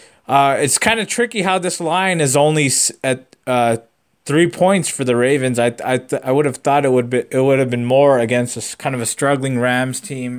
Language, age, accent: English, 20-39, American